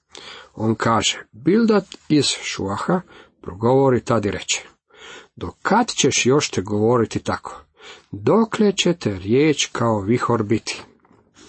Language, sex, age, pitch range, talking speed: Croatian, male, 50-69, 105-140 Hz, 115 wpm